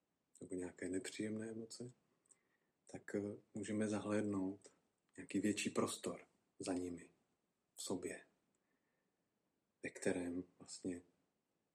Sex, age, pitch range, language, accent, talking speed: male, 40-59, 95-115 Hz, Czech, native, 85 wpm